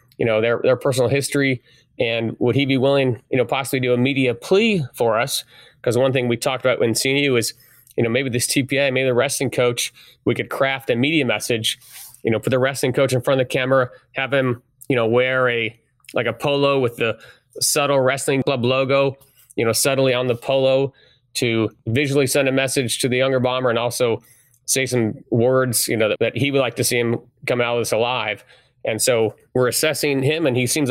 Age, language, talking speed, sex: 30-49, English, 220 wpm, male